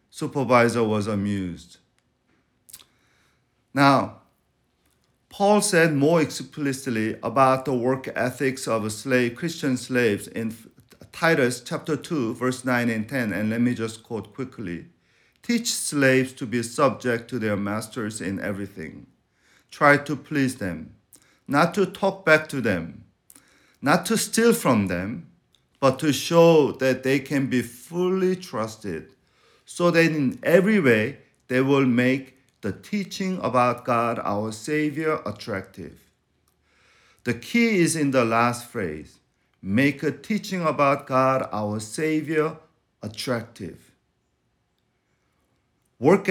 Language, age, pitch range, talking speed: English, 50-69, 115-155 Hz, 125 wpm